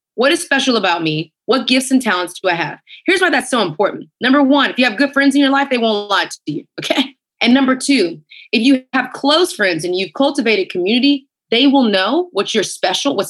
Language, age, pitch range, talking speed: English, 30-49, 190-275 Hz, 235 wpm